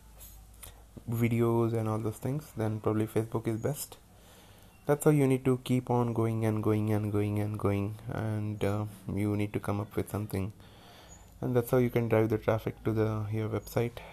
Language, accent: English, Indian